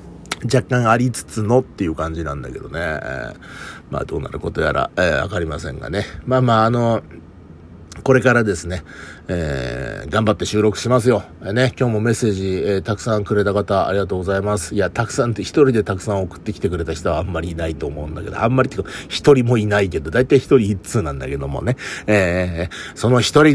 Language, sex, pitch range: Japanese, male, 90-130 Hz